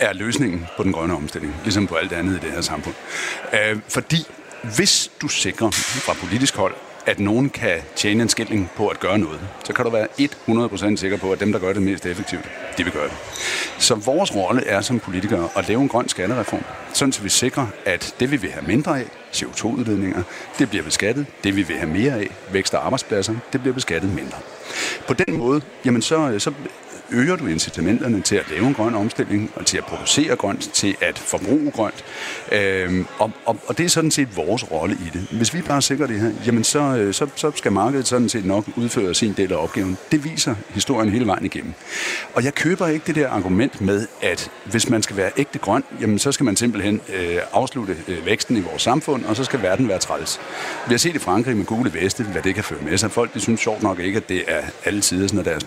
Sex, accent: male, native